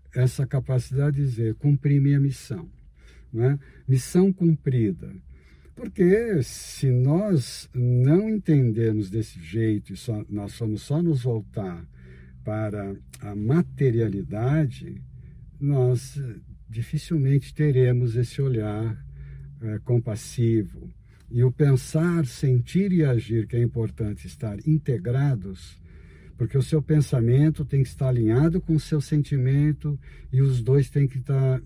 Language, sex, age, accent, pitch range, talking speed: Portuguese, male, 60-79, Brazilian, 110-145 Hz, 120 wpm